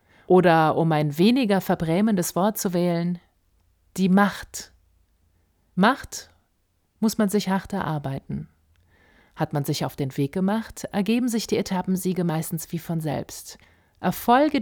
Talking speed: 130 wpm